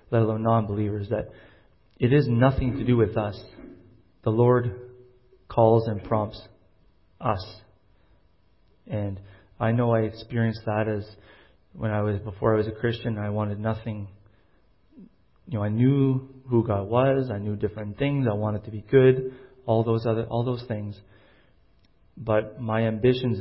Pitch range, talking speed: 105-115 Hz, 155 wpm